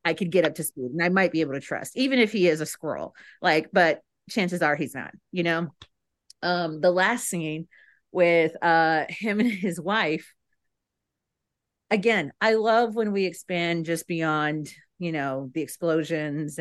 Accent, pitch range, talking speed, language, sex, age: American, 140-200 Hz, 175 wpm, English, female, 40-59